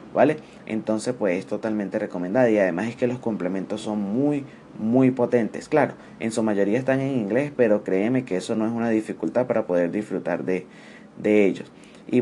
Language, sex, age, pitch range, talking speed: English, male, 20-39, 105-120 Hz, 185 wpm